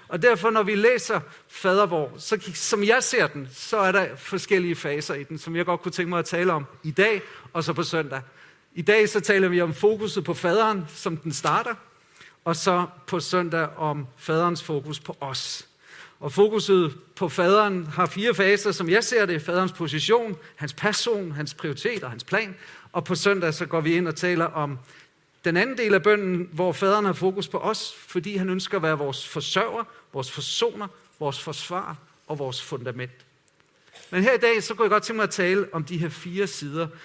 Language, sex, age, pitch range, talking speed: Danish, male, 50-69, 165-205 Hz, 205 wpm